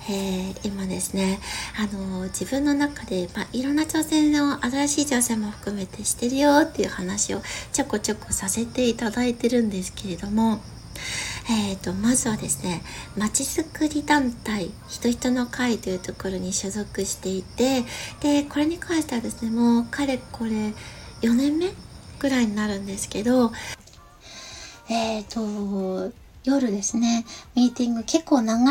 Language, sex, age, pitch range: Japanese, female, 60-79, 210-270 Hz